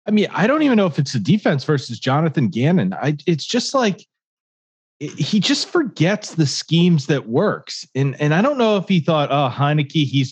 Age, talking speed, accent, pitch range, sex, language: 30-49, 210 wpm, American, 130-180 Hz, male, English